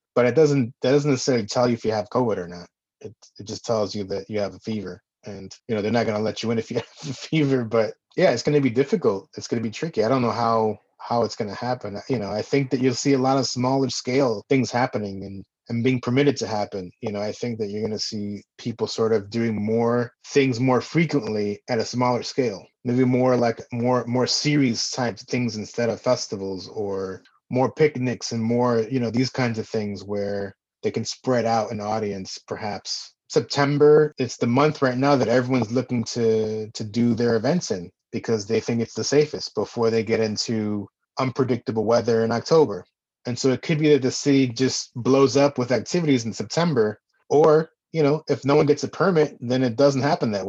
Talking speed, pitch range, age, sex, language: 225 wpm, 110-135 Hz, 30-49, male, English